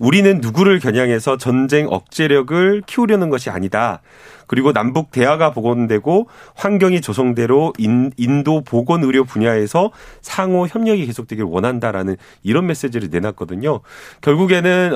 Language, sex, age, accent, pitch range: Korean, male, 30-49, native, 115-180 Hz